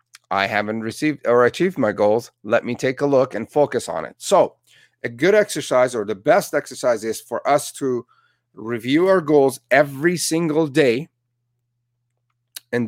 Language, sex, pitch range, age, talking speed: English, male, 120-160 Hz, 50-69, 165 wpm